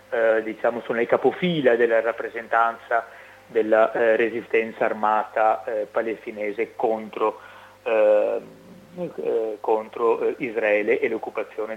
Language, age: Italian, 30-49